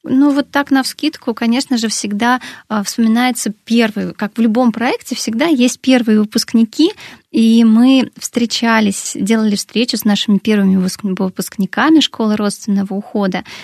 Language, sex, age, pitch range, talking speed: Russian, female, 20-39, 215-260 Hz, 130 wpm